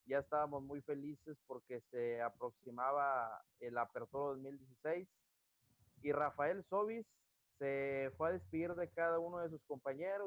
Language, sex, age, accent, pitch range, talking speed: Spanish, male, 30-49, Mexican, 140-190 Hz, 135 wpm